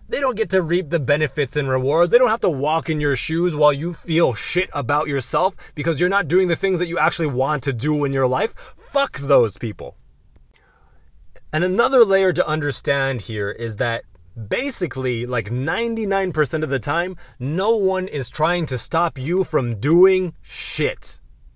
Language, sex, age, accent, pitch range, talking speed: English, male, 30-49, American, 130-180 Hz, 180 wpm